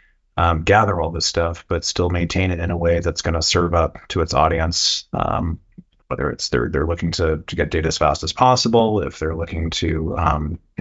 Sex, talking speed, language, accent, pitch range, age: male, 220 wpm, English, American, 85-95 Hz, 30-49